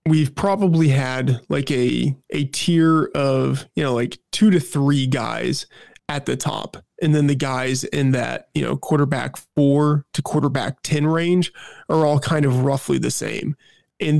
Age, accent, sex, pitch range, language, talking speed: 20-39, American, male, 130-155 Hz, English, 170 wpm